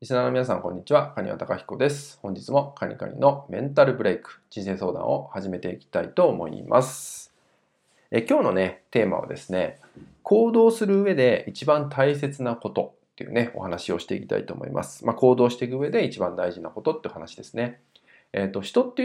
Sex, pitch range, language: male, 110-155 Hz, Japanese